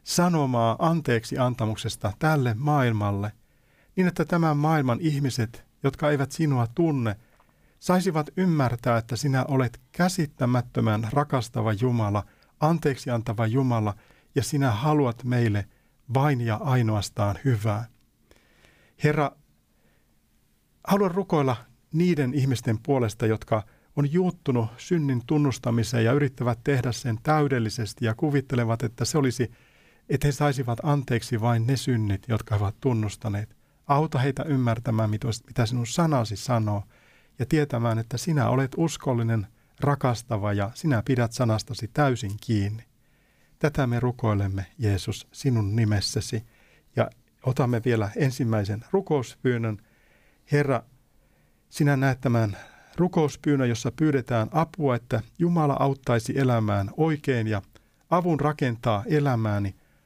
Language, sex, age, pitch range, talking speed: Finnish, male, 50-69, 115-145 Hz, 110 wpm